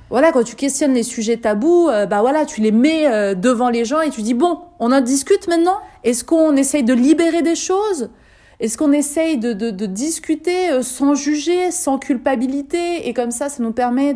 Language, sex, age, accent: French, female, 30-49, French